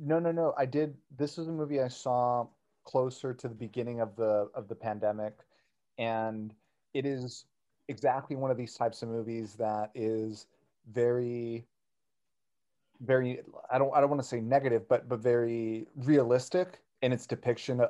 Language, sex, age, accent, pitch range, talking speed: English, male, 30-49, American, 110-135 Hz, 165 wpm